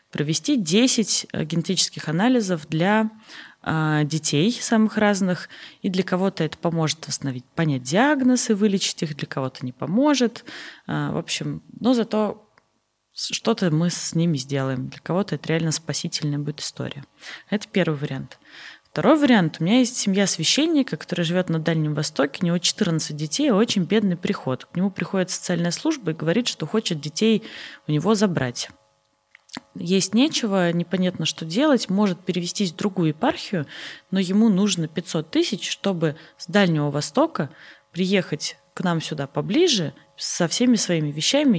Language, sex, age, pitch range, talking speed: Russian, female, 20-39, 155-215 Hz, 145 wpm